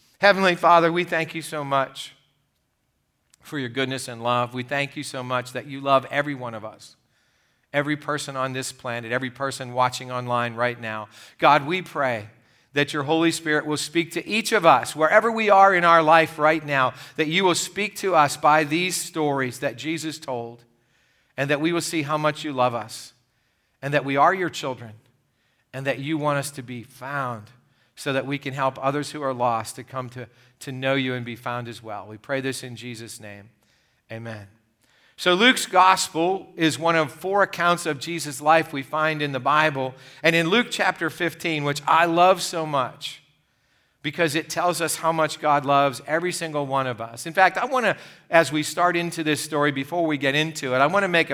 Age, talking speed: 50-69, 210 wpm